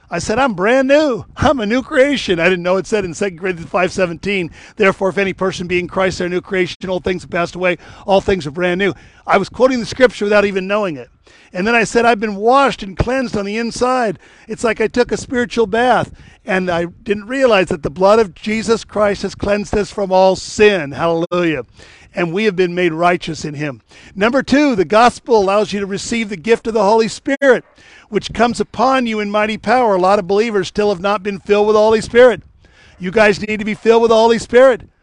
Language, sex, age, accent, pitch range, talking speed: English, male, 50-69, American, 185-230 Hz, 235 wpm